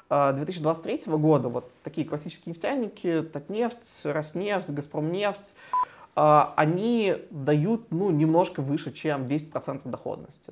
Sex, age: male, 20-39